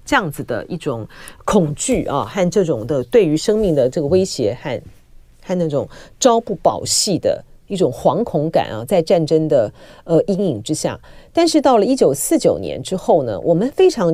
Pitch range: 160-235 Hz